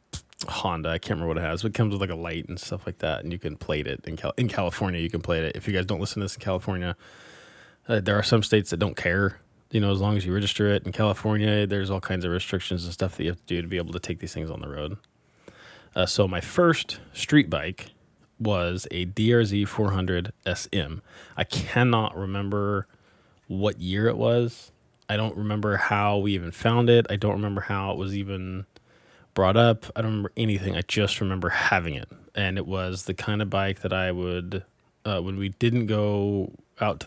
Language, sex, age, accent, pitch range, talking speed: English, male, 20-39, American, 90-105 Hz, 225 wpm